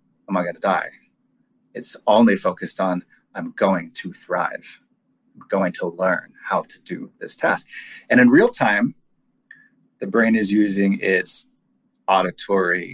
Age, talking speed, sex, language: 30-49, 145 wpm, male, English